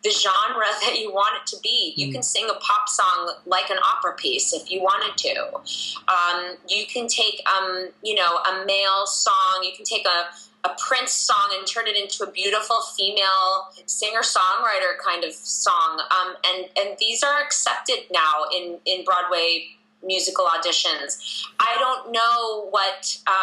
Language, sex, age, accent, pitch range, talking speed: English, female, 20-39, American, 185-220 Hz, 170 wpm